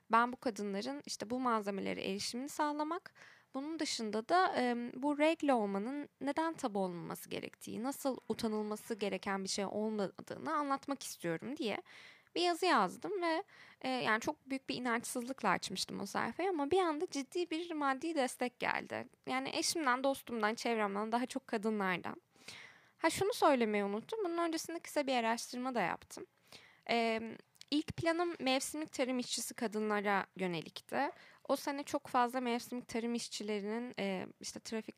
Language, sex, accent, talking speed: English, female, Turkish, 145 wpm